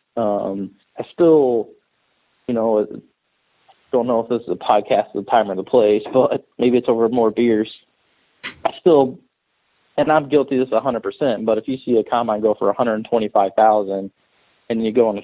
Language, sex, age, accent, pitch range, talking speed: English, male, 20-39, American, 100-115 Hz, 190 wpm